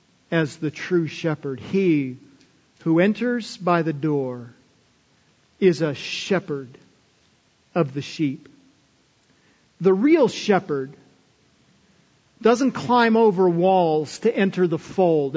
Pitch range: 175-230 Hz